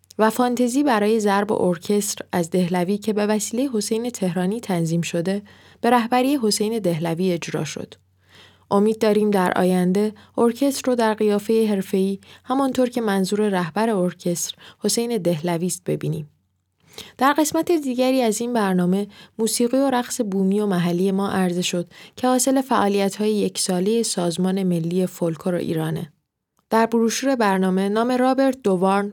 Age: 10-29